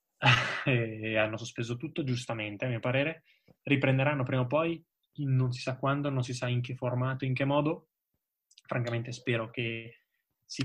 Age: 20-39